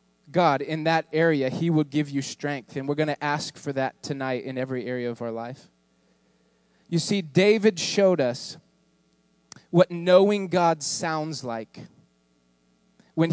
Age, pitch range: 20-39, 135-190 Hz